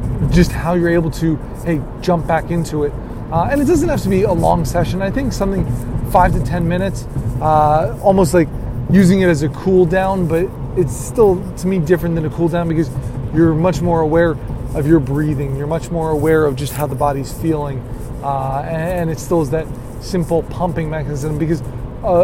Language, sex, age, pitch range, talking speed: English, male, 20-39, 140-175 Hz, 205 wpm